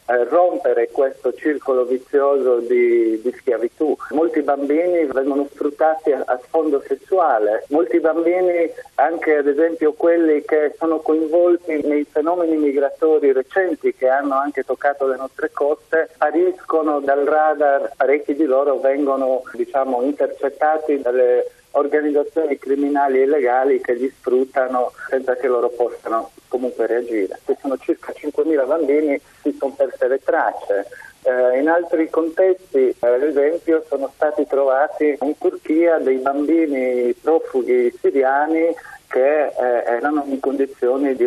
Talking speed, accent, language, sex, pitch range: 130 wpm, native, Italian, male, 135-165 Hz